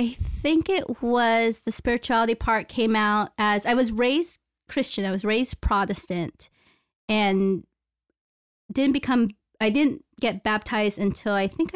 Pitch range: 205-255 Hz